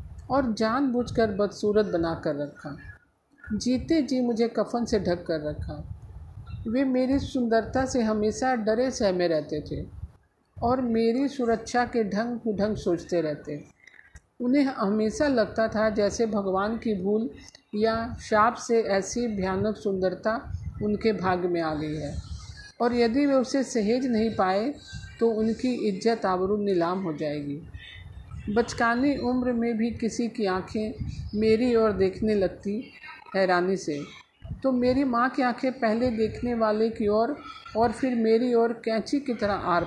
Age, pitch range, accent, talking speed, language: 50-69, 190-240 Hz, native, 145 wpm, Hindi